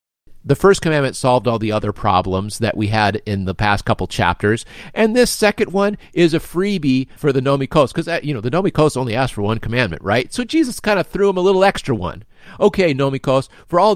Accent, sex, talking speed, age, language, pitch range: American, male, 220 wpm, 40-59, English, 110-155 Hz